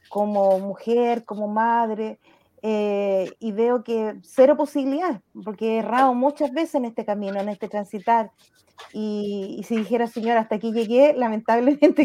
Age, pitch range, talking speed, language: 30-49, 225-285 Hz, 150 wpm, Spanish